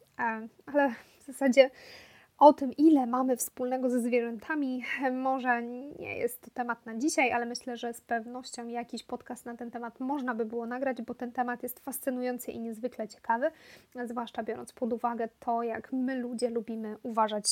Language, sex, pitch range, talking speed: Polish, female, 235-275 Hz, 170 wpm